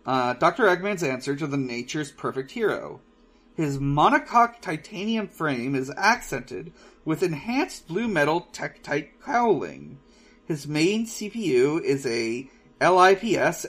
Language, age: English, 40-59